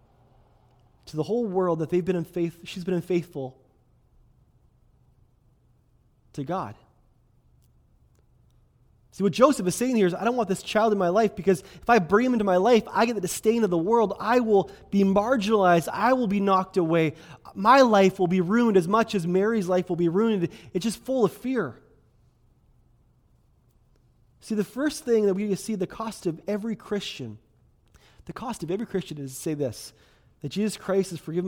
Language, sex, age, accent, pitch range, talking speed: English, male, 20-39, American, 125-200 Hz, 185 wpm